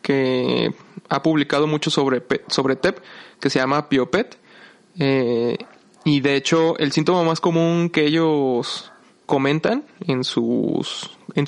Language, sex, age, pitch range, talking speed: Spanish, male, 20-39, 140-170 Hz, 130 wpm